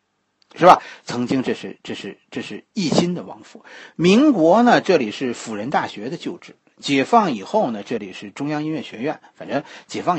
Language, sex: Chinese, male